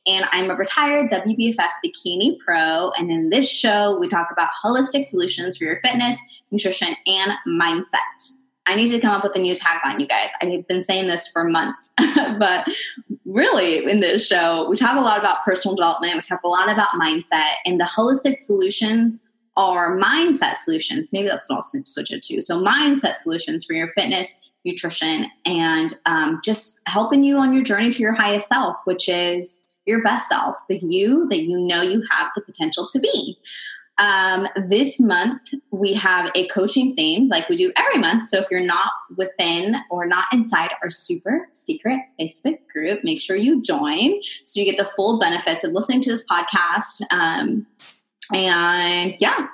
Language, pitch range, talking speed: English, 180-260 Hz, 180 wpm